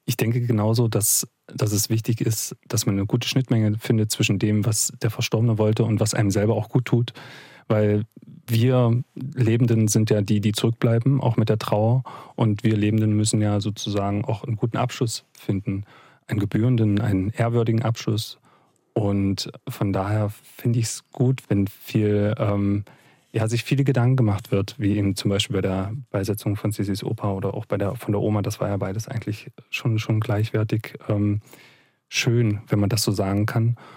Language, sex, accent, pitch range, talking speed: German, male, German, 105-125 Hz, 185 wpm